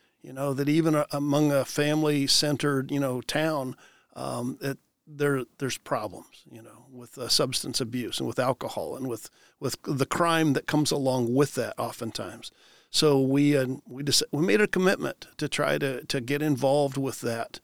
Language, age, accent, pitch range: English, 50-69, American, 125-150 Hz